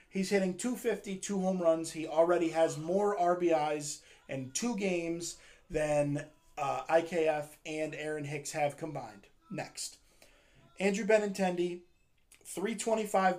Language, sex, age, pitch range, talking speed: English, male, 20-39, 140-185 Hz, 115 wpm